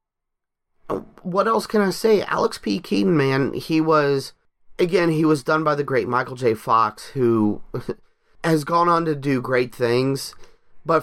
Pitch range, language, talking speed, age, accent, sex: 115-160 Hz, English, 165 wpm, 30-49, American, male